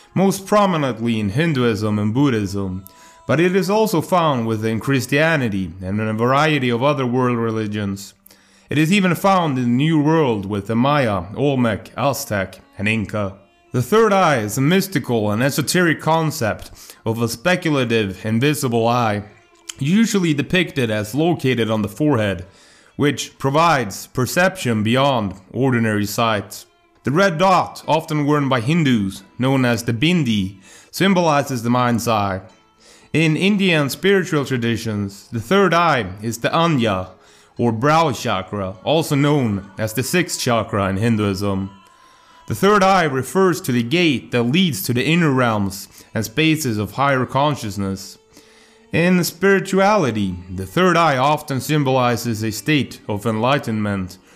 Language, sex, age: English, male, 30-49